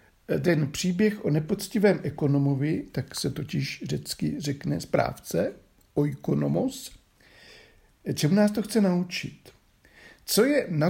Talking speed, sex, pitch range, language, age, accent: 110 wpm, male, 130-190 Hz, Czech, 60-79, native